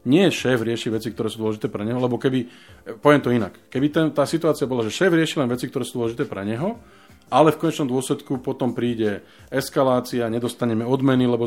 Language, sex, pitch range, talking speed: Slovak, male, 110-130 Hz, 205 wpm